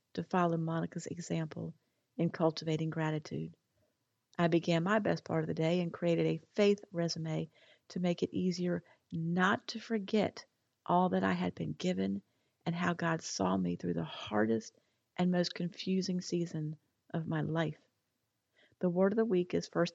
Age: 40-59